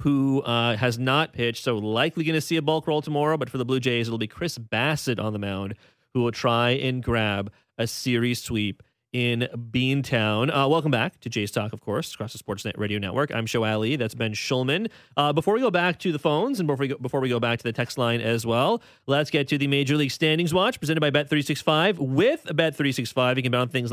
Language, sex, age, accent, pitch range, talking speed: English, male, 30-49, American, 120-155 Hz, 235 wpm